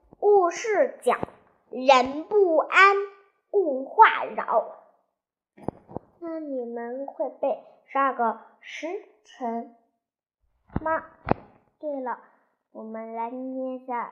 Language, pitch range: Chinese, 245-385 Hz